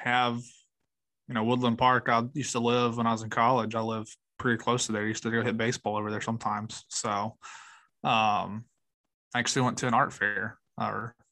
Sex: male